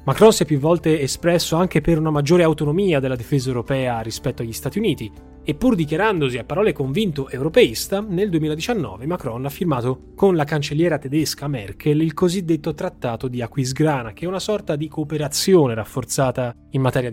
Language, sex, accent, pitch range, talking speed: Italian, male, native, 125-160 Hz, 170 wpm